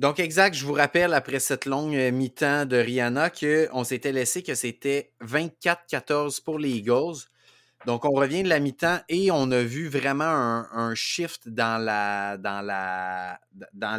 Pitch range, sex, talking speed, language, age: 120-150 Hz, male, 165 wpm, French, 30-49